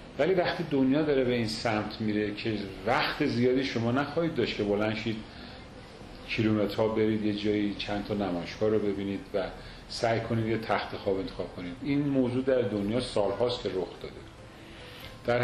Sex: male